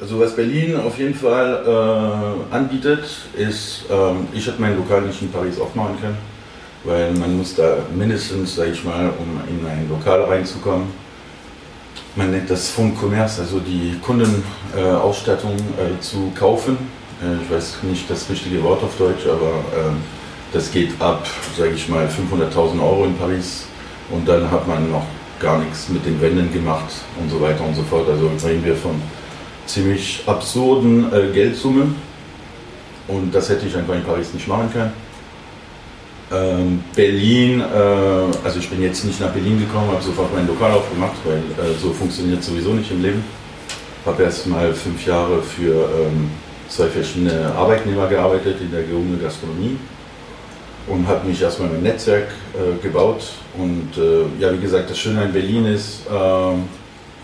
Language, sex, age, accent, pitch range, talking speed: German, male, 40-59, German, 85-105 Hz, 165 wpm